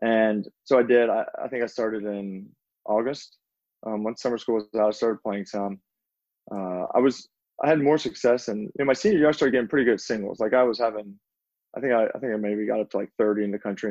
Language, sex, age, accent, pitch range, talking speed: English, male, 20-39, American, 100-115 Hz, 260 wpm